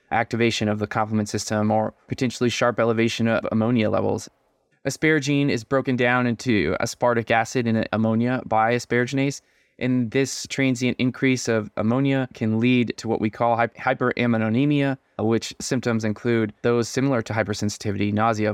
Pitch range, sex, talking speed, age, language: 110-125 Hz, male, 140 wpm, 20-39, English